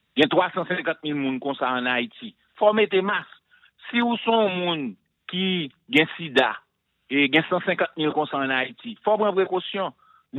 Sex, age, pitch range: male, 50-69, 150-205 Hz